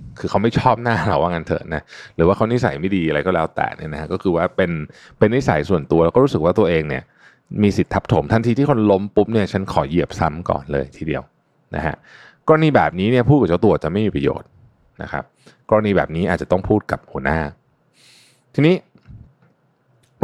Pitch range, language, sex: 90-125 Hz, Thai, male